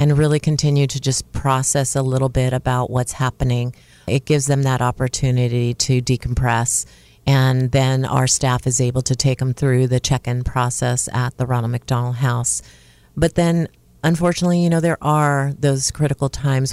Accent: American